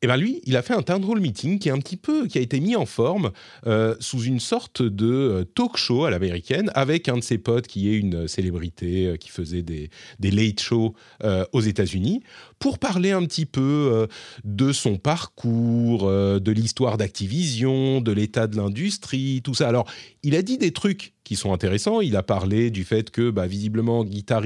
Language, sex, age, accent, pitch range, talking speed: French, male, 30-49, French, 100-135 Hz, 200 wpm